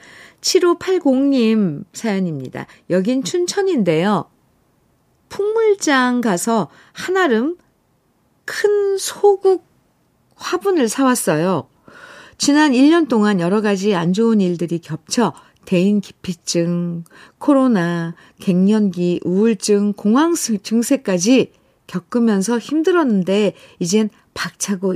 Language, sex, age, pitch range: Korean, female, 50-69, 175-255 Hz